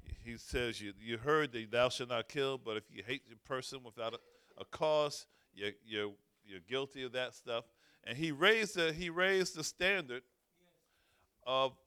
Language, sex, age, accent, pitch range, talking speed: English, male, 50-69, American, 115-150 Hz, 180 wpm